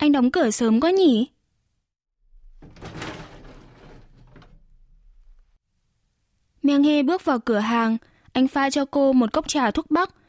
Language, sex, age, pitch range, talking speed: Vietnamese, female, 10-29, 230-285 Hz, 120 wpm